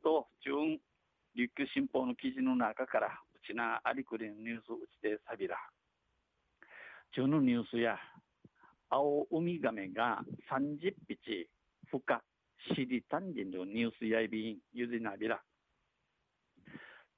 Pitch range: 115-155 Hz